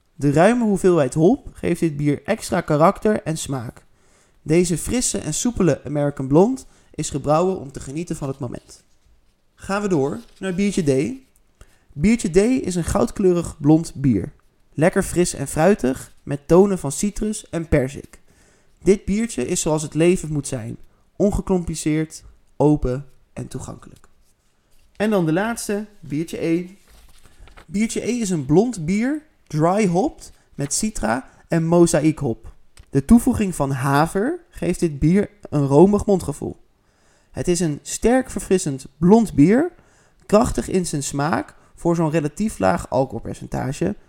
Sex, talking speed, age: male, 145 wpm, 20-39